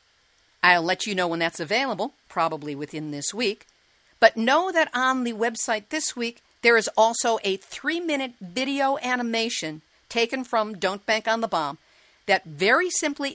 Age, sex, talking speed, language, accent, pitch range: 50-69, female, 160 wpm, English, American, 175-255 Hz